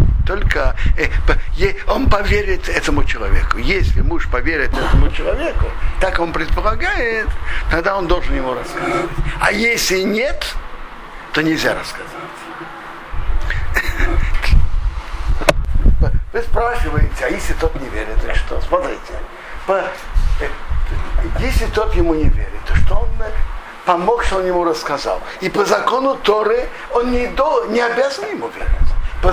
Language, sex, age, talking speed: Russian, male, 60-79, 115 wpm